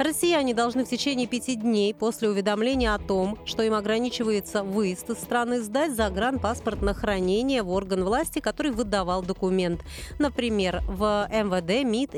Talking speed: 150 wpm